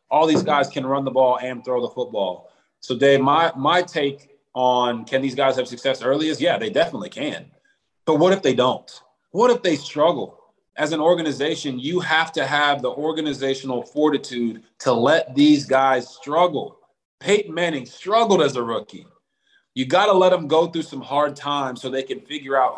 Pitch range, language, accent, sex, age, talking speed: 130-155 Hz, English, American, male, 30-49, 190 wpm